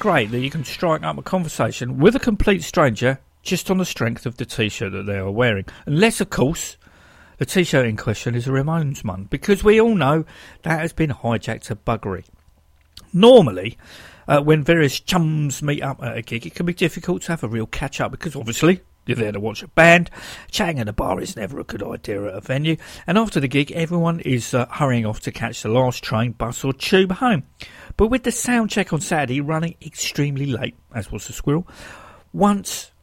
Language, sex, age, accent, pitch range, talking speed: English, male, 50-69, British, 120-185 Hz, 210 wpm